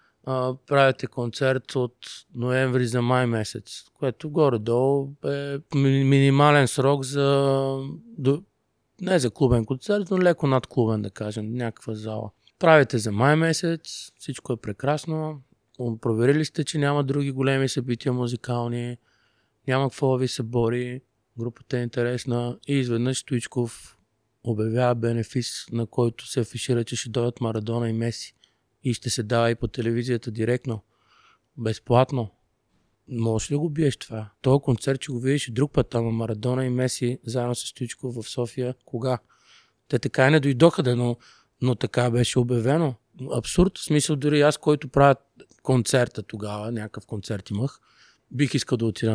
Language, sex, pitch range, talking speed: Bulgarian, male, 115-140 Hz, 150 wpm